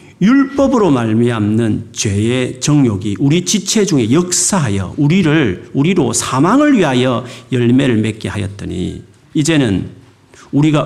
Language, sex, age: Korean, male, 40-59